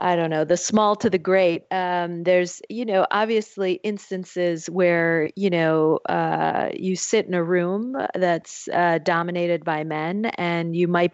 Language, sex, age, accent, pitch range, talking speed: English, female, 30-49, American, 165-195 Hz, 165 wpm